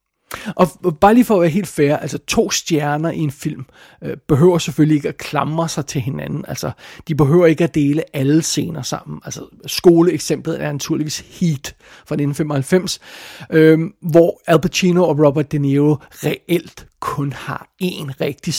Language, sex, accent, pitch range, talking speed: Danish, male, native, 150-180 Hz, 160 wpm